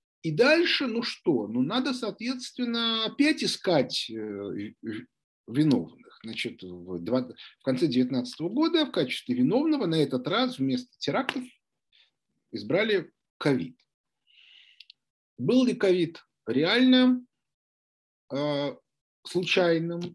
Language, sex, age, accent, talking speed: Russian, male, 40-59, native, 85 wpm